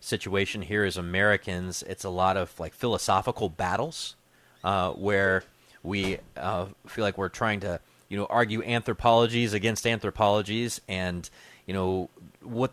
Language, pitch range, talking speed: English, 95-115 Hz, 140 wpm